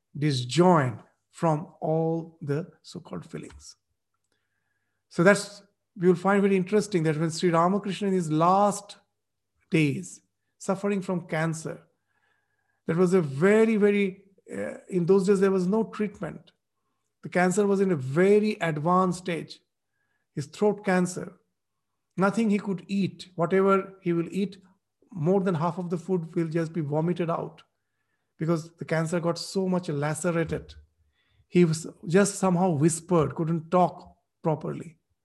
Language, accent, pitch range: English, Indian, 160-200 Hz